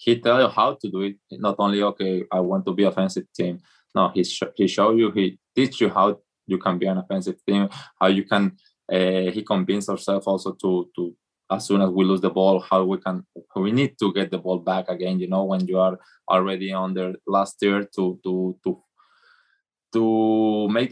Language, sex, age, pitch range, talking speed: English, male, 20-39, 95-105 Hz, 220 wpm